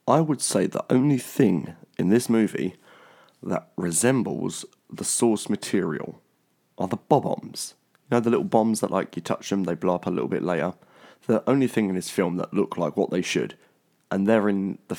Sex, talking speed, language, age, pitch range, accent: male, 200 wpm, English, 30-49, 95-110 Hz, British